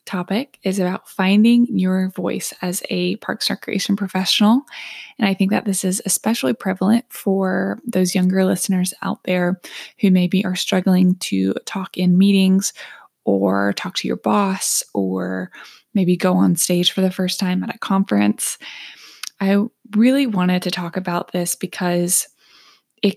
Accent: American